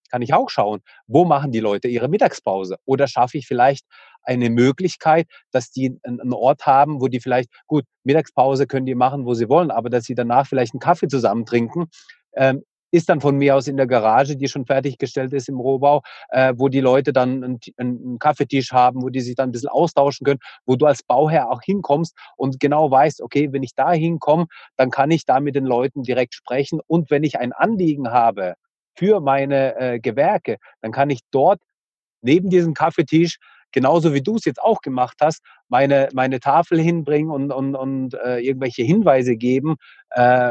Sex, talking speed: male, 195 wpm